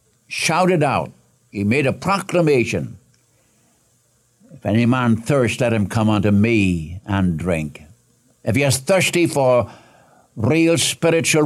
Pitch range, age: 100-130 Hz, 60-79